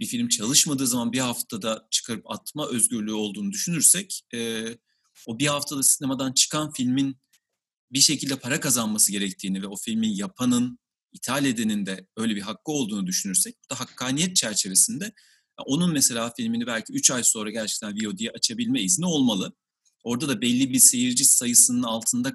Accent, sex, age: native, male, 40-59